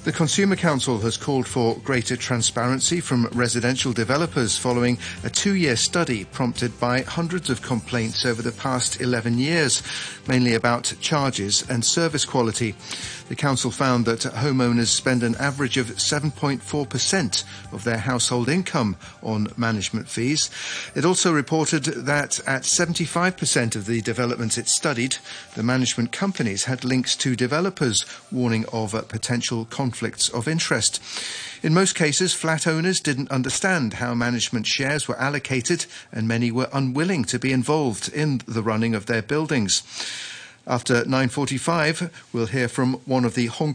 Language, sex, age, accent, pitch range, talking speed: English, male, 40-59, British, 115-145 Hz, 150 wpm